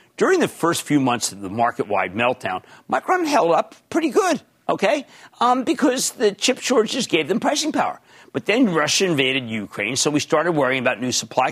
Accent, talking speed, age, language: American, 190 wpm, 50-69, English